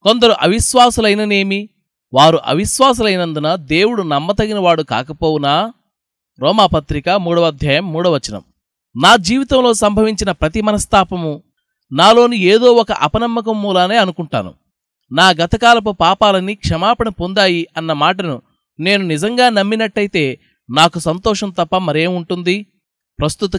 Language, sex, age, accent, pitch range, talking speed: Telugu, male, 20-39, native, 170-215 Hz, 95 wpm